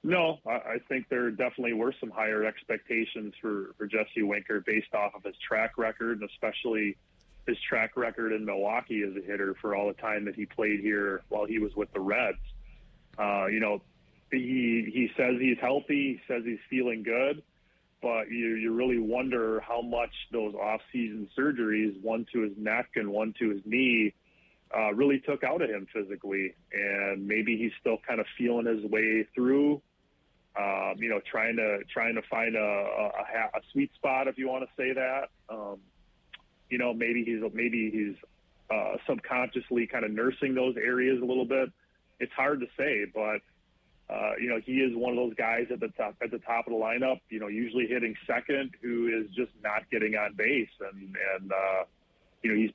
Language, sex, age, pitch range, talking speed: English, male, 30-49, 105-125 Hz, 190 wpm